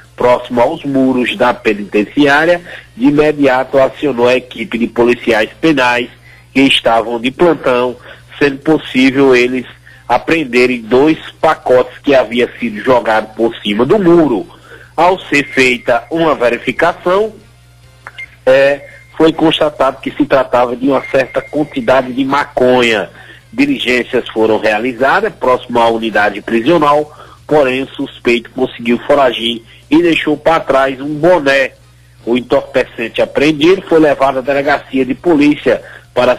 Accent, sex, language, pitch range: Brazilian, male, Portuguese, 120-150 Hz